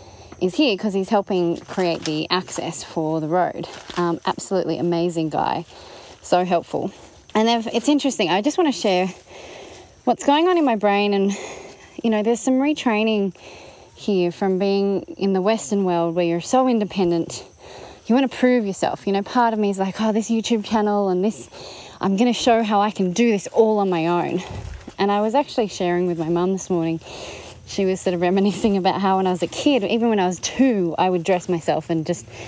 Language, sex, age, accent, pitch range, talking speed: English, female, 30-49, Australian, 170-225 Hz, 200 wpm